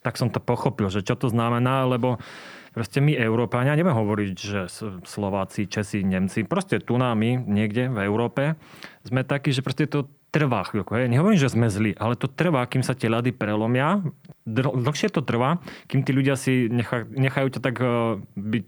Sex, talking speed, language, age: male, 180 wpm, Slovak, 30-49